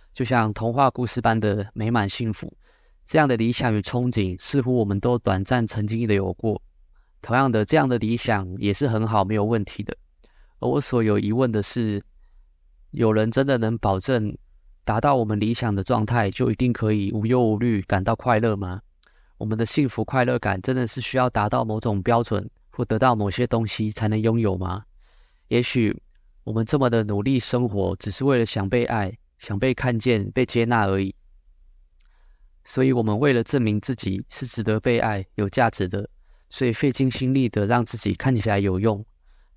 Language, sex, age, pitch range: Chinese, male, 20-39, 100-125 Hz